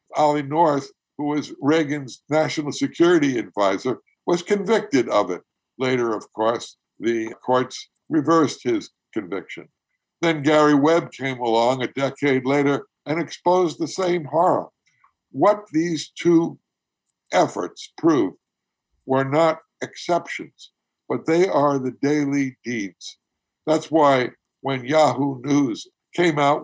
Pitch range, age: 130-170 Hz, 60-79